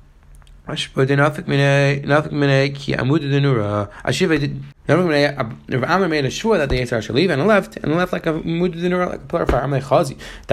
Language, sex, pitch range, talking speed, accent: English, male, 130-175 Hz, 205 wpm, American